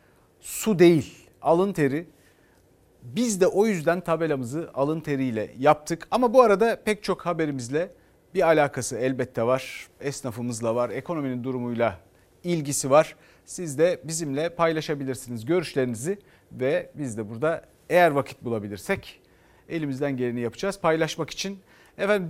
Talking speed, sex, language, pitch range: 125 wpm, male, Turkish, 125-165 Hz